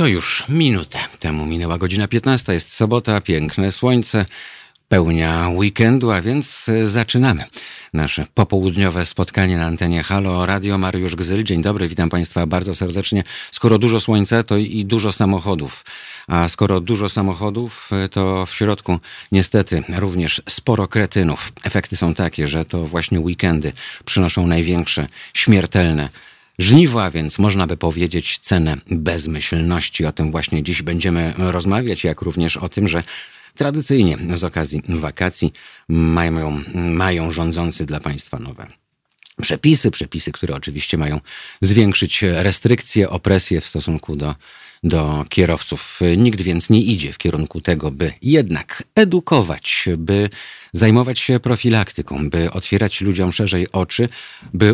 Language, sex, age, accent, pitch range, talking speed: Polish, male, 50-69, native, 80-105 Hz, 130 wpm